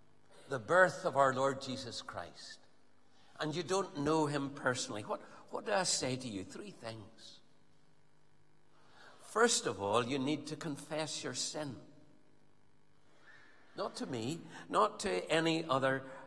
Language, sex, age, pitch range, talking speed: English, male, 60-79, 115-160 Hz, 140 wpm